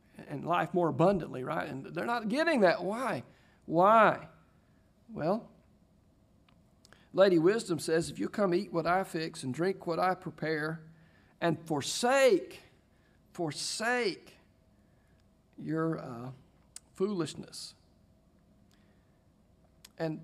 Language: English